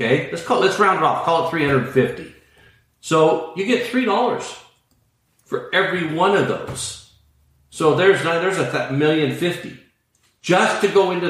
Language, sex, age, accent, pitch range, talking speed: English, male, 50-69, American, 120-155 Hz, 160 wpm